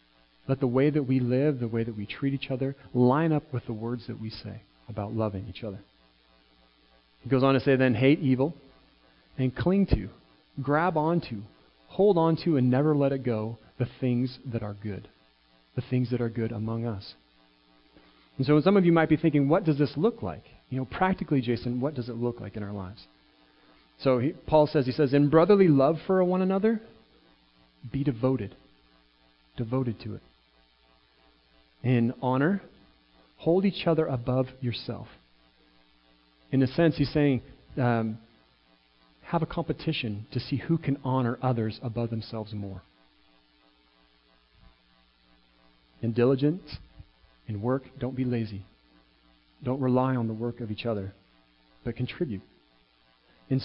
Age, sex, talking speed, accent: 40-59, male, 160 wpm, American